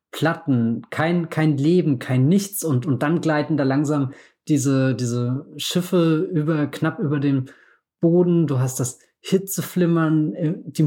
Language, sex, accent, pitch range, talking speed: German, male, German, 130-155 Hz, 140 wpm